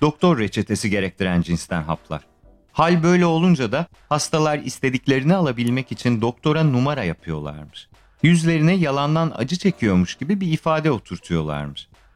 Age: 40-59